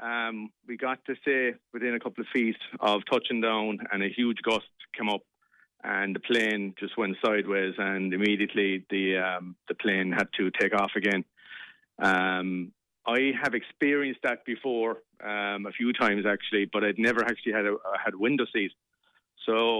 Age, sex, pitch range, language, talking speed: 40-59, male, 100-115 Hz, English, 175 wpm